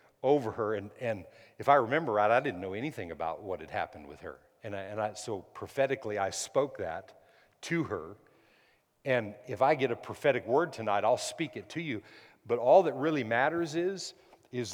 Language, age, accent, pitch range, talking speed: English, 50-69, American, 125-175 Hz, 200 wpm